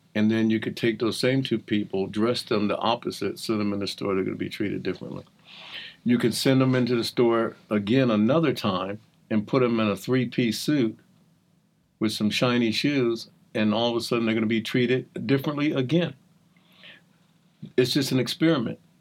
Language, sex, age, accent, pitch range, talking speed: English, male, 50-69, American, 110-170 Hz, 195 wpm